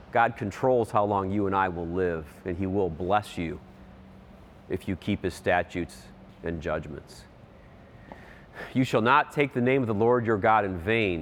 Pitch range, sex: 90-115 Hz, male